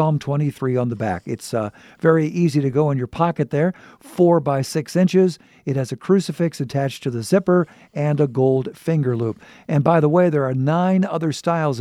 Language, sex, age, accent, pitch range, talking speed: English, male, 50-69, American, 105-160 Hz, 210 wpm